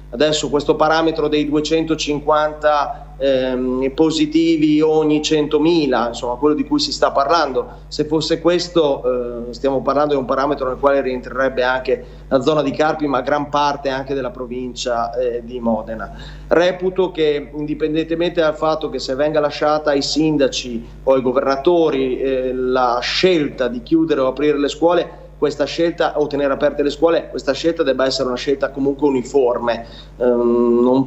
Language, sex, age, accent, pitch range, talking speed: Italian, male, 30-49, native, 130-155 Hz, 155 wpm